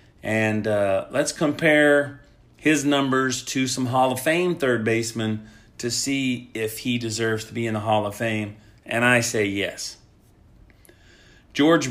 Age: 30-49